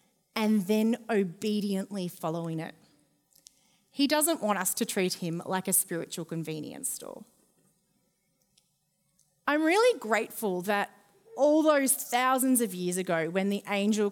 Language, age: English, 30-49